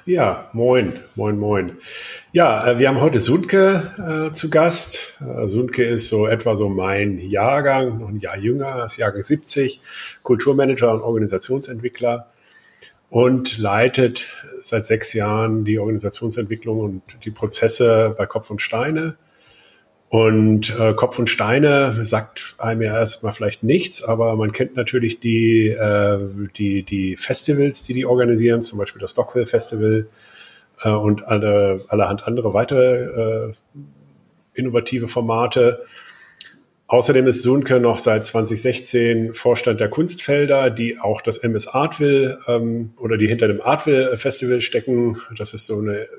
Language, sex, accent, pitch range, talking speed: German, male, German, 110-130 Hz, 135 wpm